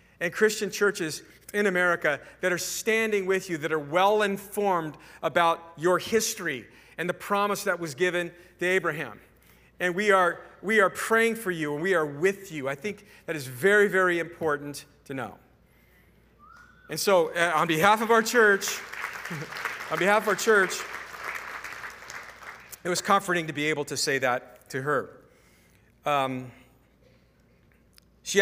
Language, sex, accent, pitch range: English, male, American, 140-185 Hz